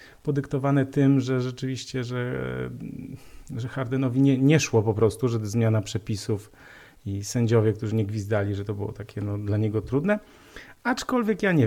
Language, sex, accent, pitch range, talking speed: Polish, male, native, 120-155 Hz, 160 wpm